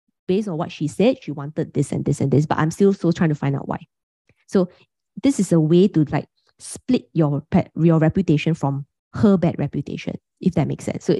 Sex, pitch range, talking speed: female, 150-195 Hz, 225 wpm